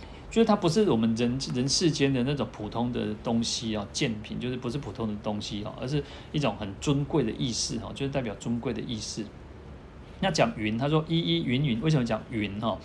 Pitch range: 110-140 Hz